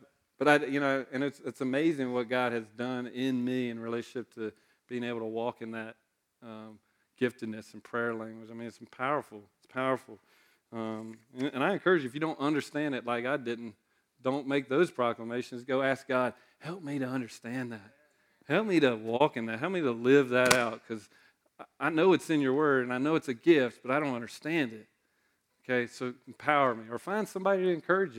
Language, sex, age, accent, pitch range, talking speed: English, male, 40-59, American, 115-140 Hz, 210 wpm